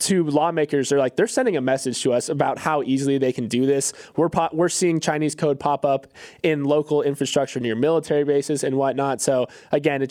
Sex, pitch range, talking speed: male, 140-180 Hz, 215 wpm